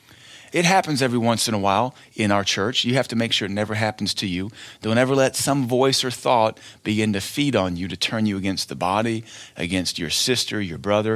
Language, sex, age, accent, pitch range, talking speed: English, male, 40-59, American, 100-125 Hz, 230 wpm